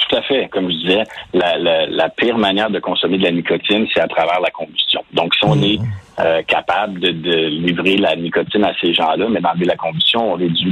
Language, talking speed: French, 240 wpm